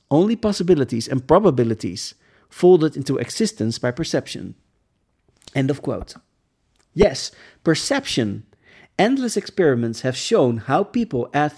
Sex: male